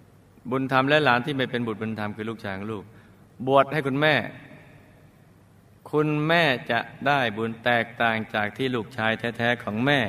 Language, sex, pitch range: Thai, male, 105-130 Hz